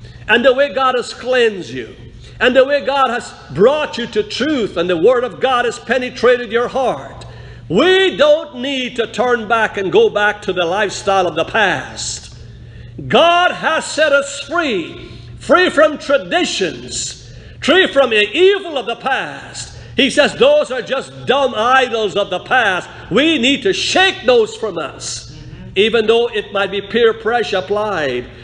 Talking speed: 170 wpm